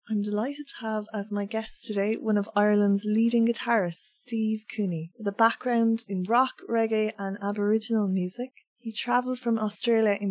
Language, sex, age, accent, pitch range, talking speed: English, female, 20-39, Irish, 195-225 Hz, 170 wpm